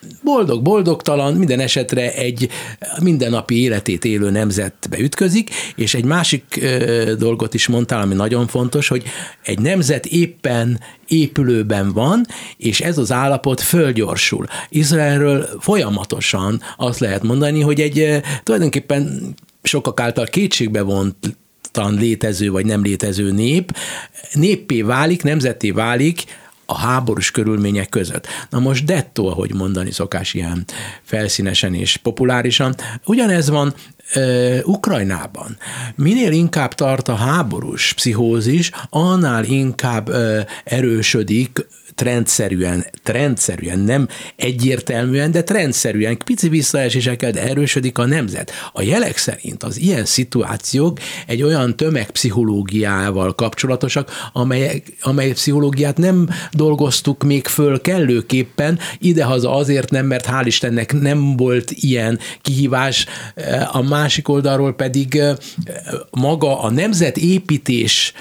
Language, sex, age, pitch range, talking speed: Hungarian, male, 60-79, 115-150 Hz, 110 wpm